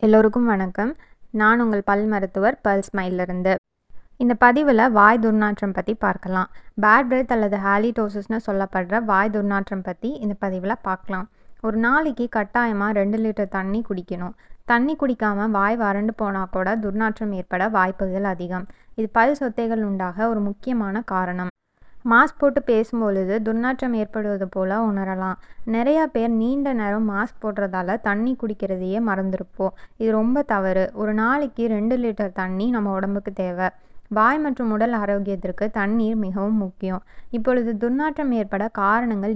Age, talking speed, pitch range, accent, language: 20-39, 135 wpm, 195-230 Hz, native, Tamil